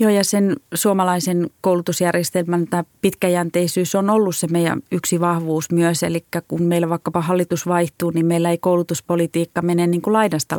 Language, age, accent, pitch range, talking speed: Finnish, 30-49, native, 170-190 Hz, 160 wpm